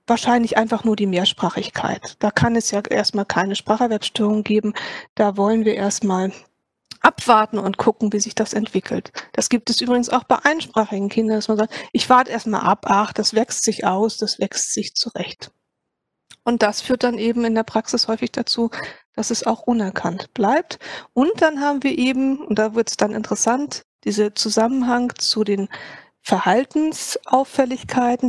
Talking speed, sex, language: 170 wpm, female, German